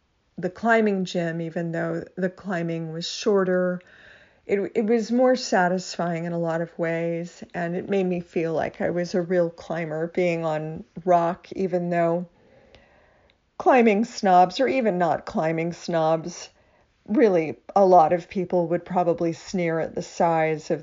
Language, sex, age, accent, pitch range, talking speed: English, female, 50-69, American, 170-195 Hz, 155 wpm